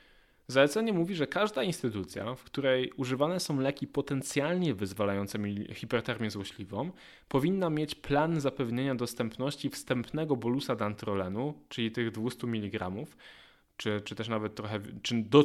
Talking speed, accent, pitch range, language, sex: 130 wpm, native, 115-150 Hz, Polish, male